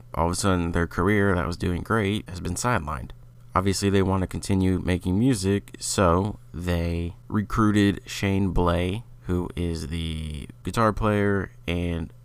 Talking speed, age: 150 wpm, 30-49